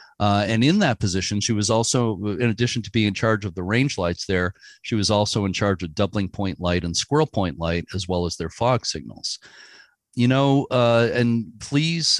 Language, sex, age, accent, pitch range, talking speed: English, male, 40-59, American, 90-120 Hz, 210 wpm